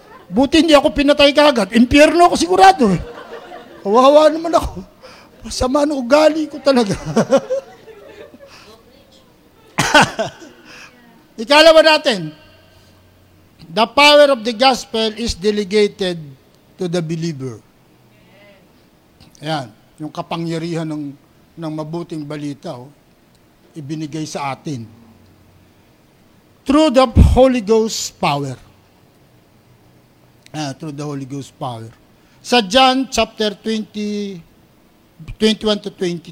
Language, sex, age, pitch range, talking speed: Filipino, male, 50-69, 155-250 Hz, 95 wpm